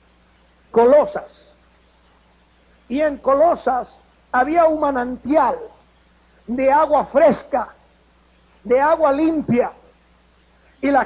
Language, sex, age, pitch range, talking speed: Spanish, male, 50-69, 225-300 Hz, 80 wpm